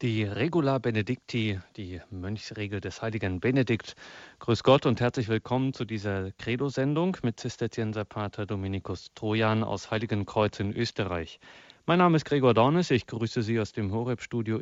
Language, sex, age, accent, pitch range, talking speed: German, male, 30-49, German, 105-130 Hz, 150 wpm